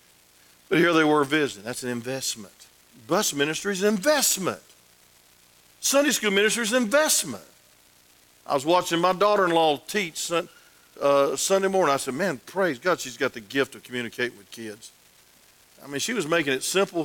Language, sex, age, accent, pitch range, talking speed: English, male, 50-69, American, 115-190 Hz, 165 wpm